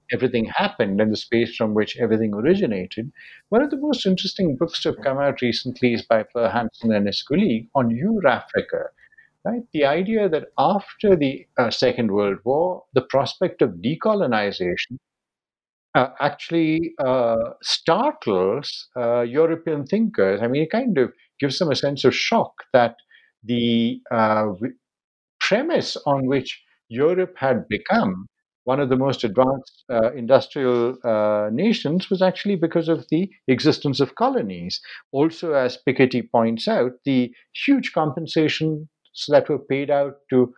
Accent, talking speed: Indian, 150 wpm